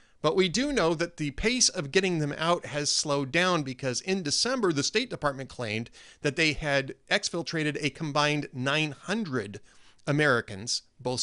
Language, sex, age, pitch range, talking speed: English, male, 40-59, 125-170 Hz, 160 wpm